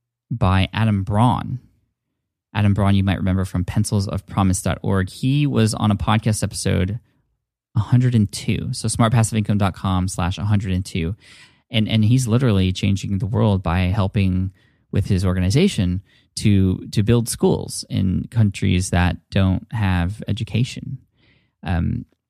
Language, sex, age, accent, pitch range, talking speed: English, male, 10-29, American, 95-120 Hz, 120 wpm